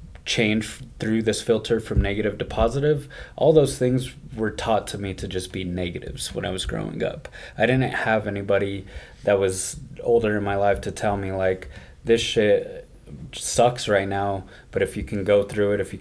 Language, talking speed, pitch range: English, 195 wpm, 95-110 Hz